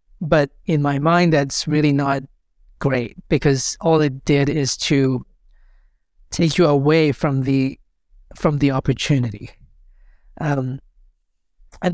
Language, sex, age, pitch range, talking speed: English, male, 30-49, 140-165 Hz, 120 wpm